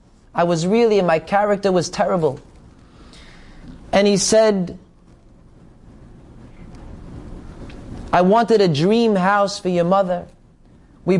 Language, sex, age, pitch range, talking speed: English, male, 20-39, 175-215 Hz, 105 wpm